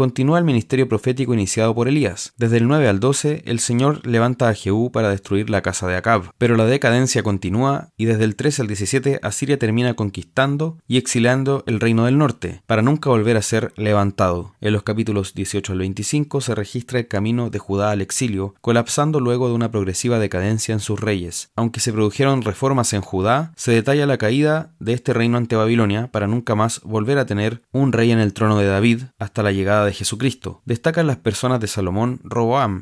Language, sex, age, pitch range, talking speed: Spanish, male, 20-39, 105-130 Hz, 205 wpm